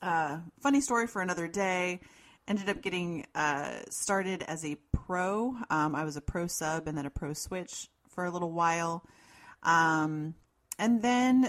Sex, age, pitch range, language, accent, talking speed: female, 30-49, 165-205 Hz, English, American, 165 wpm